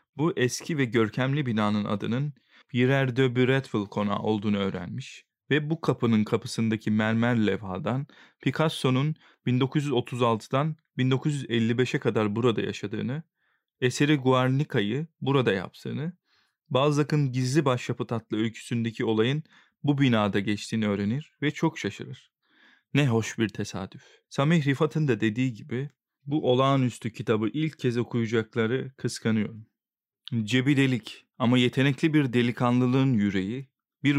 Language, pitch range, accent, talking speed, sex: Turkish, 110-135 Hz, native, 115 wpm, male